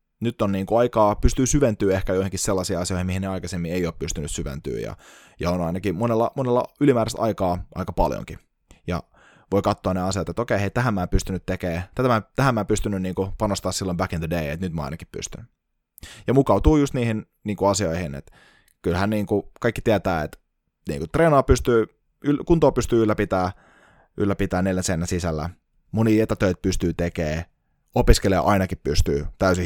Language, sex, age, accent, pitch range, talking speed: Finnish, male, 20-39, native, 85-105 Hz, 180 wpm